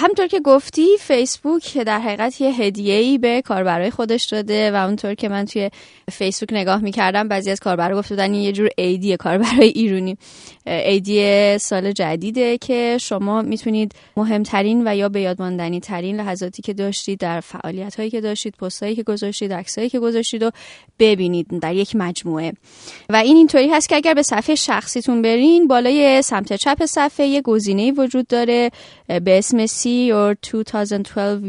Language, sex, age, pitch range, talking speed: Persian, female, 30-49, 190-245 Hz, 155 wpm